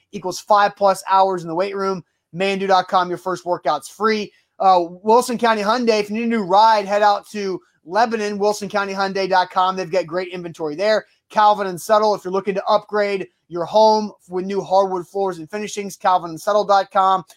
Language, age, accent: English, 30-49, American